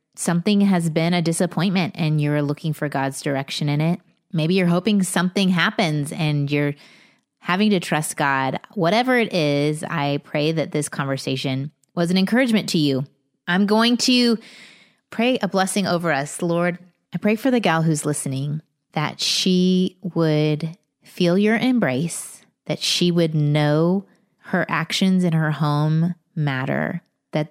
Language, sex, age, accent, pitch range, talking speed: English, female, 20-39, American, 150-185 Hz, 155 wpm